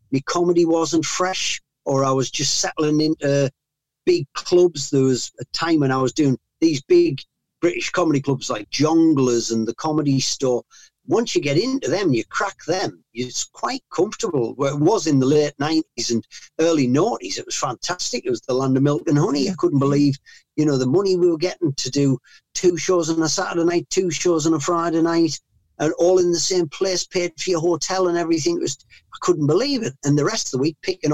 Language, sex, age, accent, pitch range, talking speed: English, male, 40-59, British, 140-175 Hz, 220 wpm